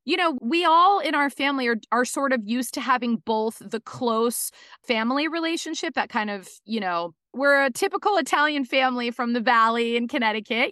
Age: 30-49